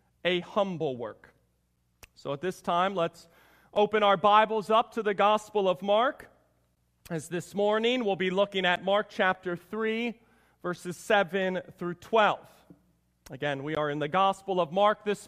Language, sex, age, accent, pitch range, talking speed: English, male, 40-59, American, 160-225 Hz, 155 wpm